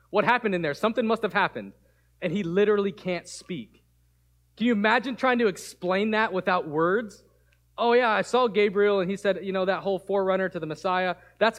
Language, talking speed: English, 200 wpm